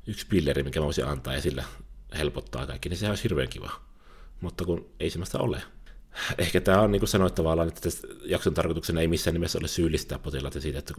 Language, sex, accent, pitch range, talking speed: Finnish, male, native, 70-90 Hz, 190 wpm